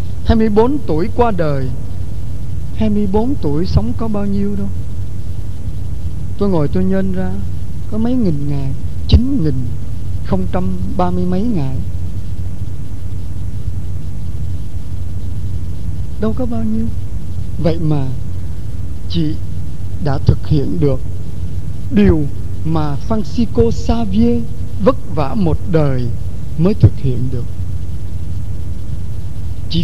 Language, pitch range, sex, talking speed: Vietnamese, 90-135 Hz, male, 95 wpm